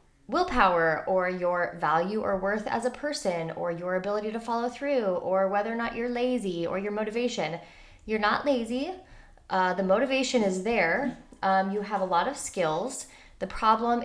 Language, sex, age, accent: English, female, 20-39, American